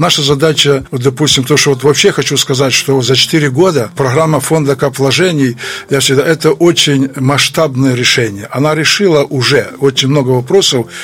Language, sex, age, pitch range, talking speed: Russian, male, 60-79, 135-160 Hz, 165 wpm